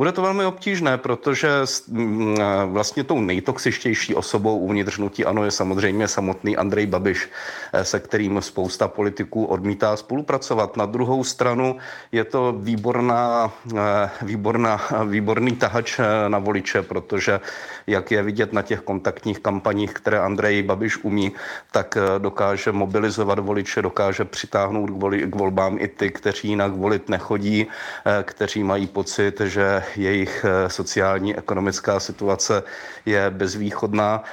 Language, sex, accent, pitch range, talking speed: Czech, male, native, 100-115 Hz, 125 wpm